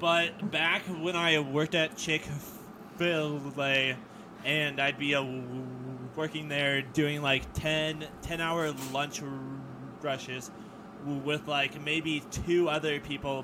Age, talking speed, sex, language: 20-39, 105 wpm, male, English